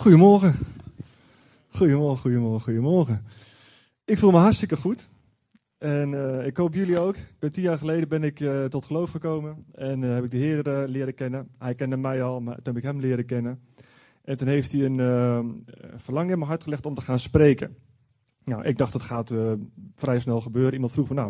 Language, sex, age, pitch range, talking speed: Dutch, male, 30-49, 125-155 Hz, 205 wpm